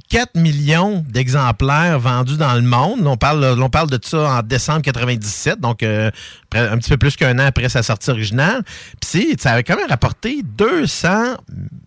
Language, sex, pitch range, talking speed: French, male, 120-160 Hz, 175 wpm